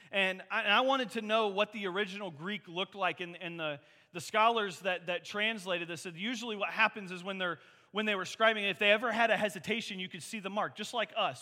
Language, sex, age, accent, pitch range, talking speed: English, male, 30-49, American, 175-245 Hz, 245 wpm